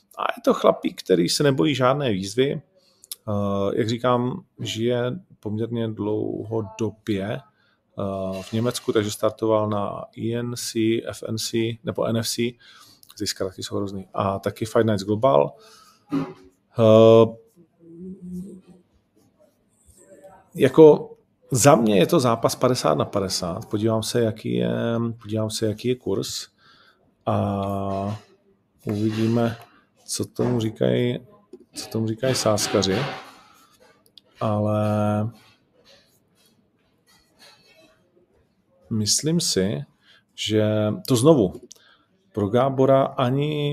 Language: Czech